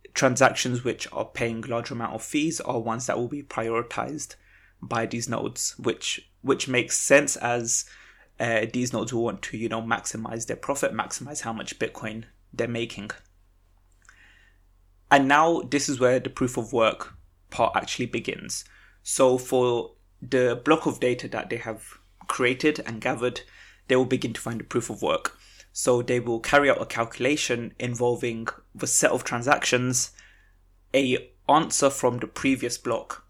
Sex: male